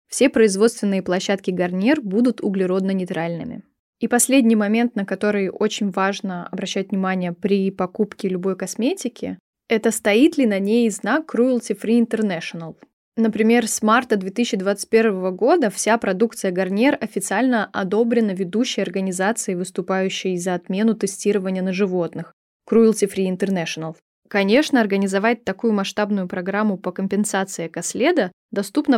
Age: 20-39